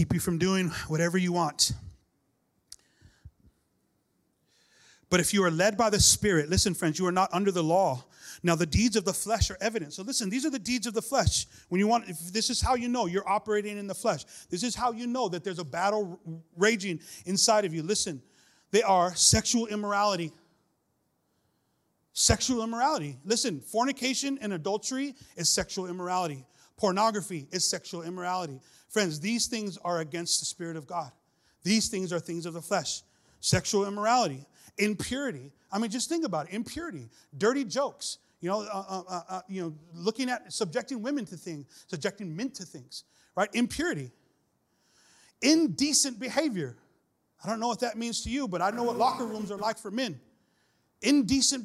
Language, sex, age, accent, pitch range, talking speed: English, male, 30-49, American, 170-235 Hz, 175 wpm